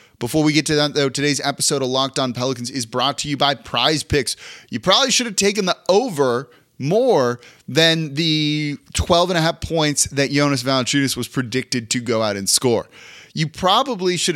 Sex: male